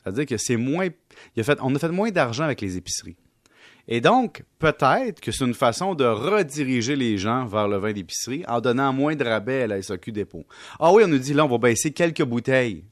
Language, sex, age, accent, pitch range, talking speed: French, male, 30-49, Canadian, 105-145 Hz, 210 wpm